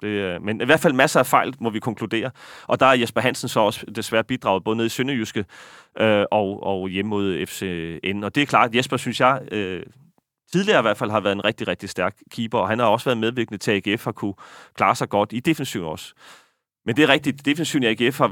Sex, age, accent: male, 30-49, native